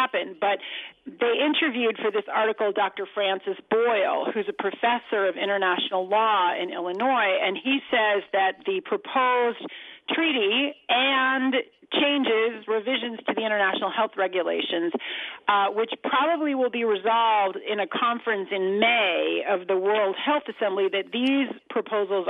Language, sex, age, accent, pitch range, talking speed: English, female, 40-59, American, 190-250 Hz, 135 wpm